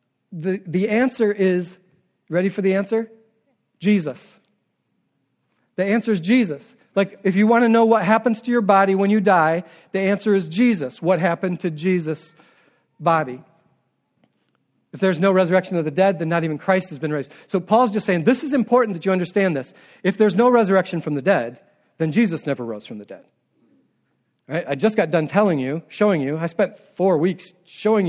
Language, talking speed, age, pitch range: English, 190 wpm, 40-59, 165-210 Hz